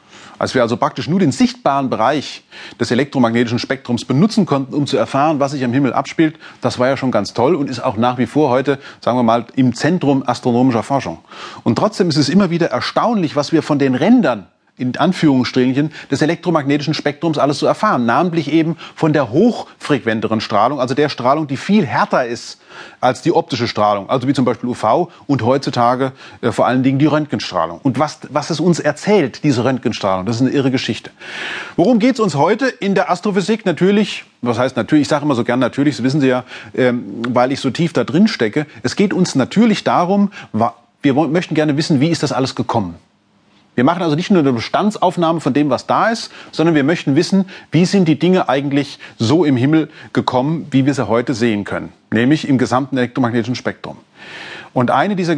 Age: 30-49